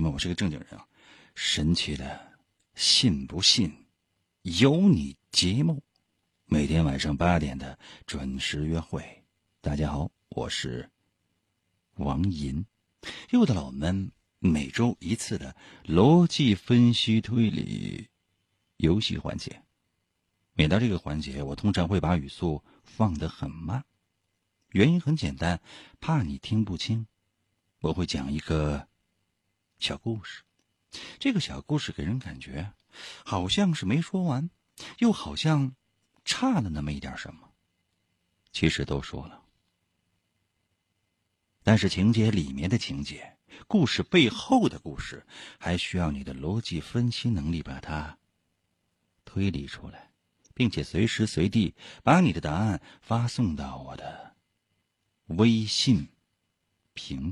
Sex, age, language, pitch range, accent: male, 50-69, Chinese, 80-110 Hz, native